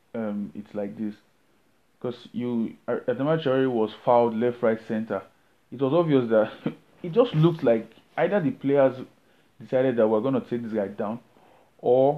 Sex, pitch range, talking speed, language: male, 115-160 Hz, 170 wpm, English